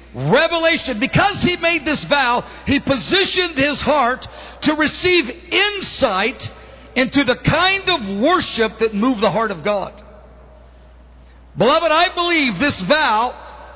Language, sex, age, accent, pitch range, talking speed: English, male, 50-69, American, 220-315 Hz, 125 wpm